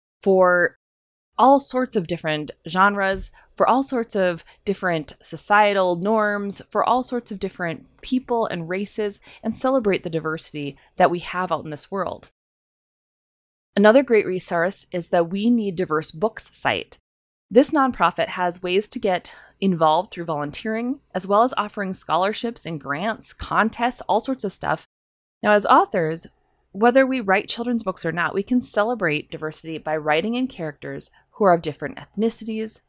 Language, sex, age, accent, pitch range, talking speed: English, female, 20-39, American, 165-225 Hz, 155 wpm